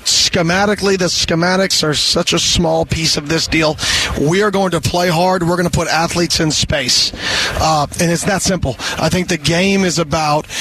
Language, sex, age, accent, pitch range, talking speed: English, male, 40-59, American, 160-190 Hz, 200 wpm